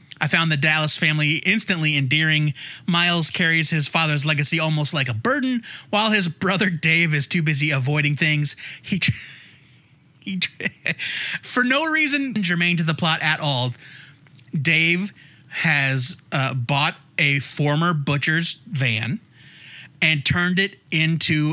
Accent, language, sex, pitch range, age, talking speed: American, English, male, 145-185 Hz, 30-49, 135 wpm